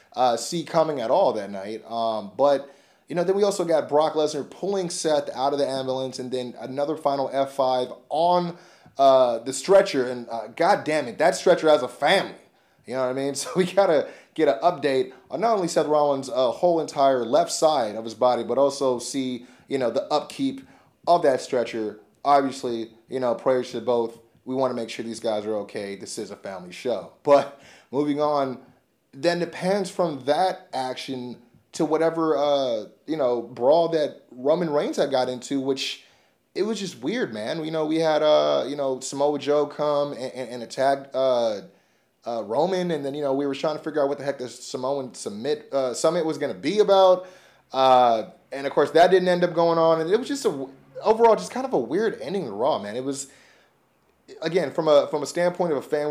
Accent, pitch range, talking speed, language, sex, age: American, 130-165 Hz, 215 wpm, English, male, 30-49